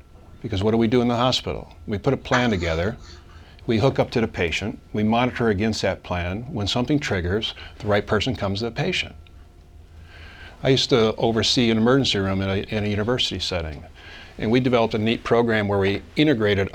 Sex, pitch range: male, 85-120 Hz